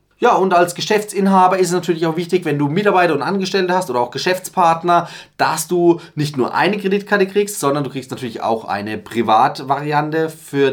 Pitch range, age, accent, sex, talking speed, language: 125-180 Hz, 30-49, German, male, 185 wpm, German